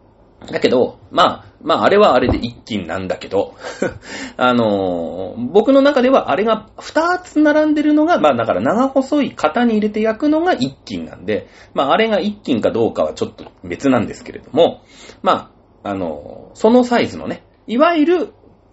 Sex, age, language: male, 30-49, Japanese